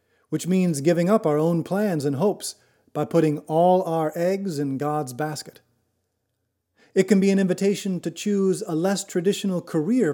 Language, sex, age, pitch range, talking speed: English, male, 30-49, 140-180 Hz, 165 wpm